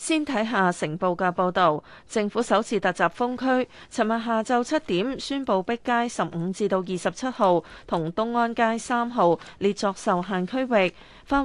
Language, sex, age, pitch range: Chinese, female, 30-49, 180-240 Hz